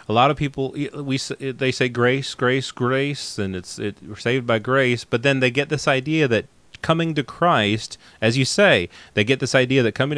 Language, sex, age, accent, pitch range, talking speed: English, male, 30-49, American, 105-140 Hz, 210 wpm